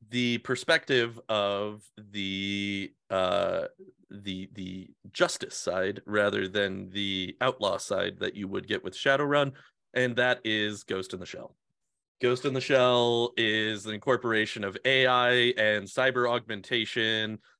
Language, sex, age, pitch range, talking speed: English, male, 30-49, 105-130 Hz, 135 wpm